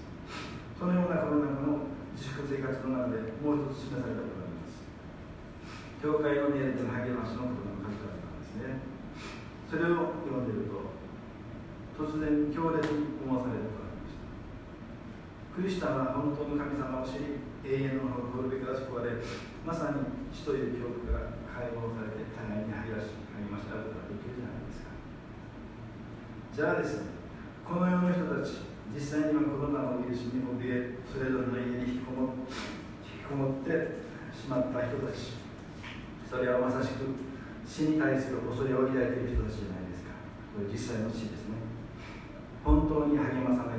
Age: 40-59